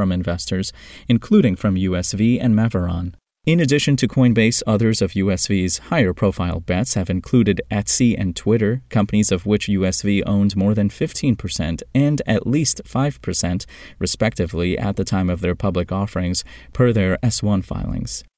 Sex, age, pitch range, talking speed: male, 30-49, 95-120 Hz, 150 wpm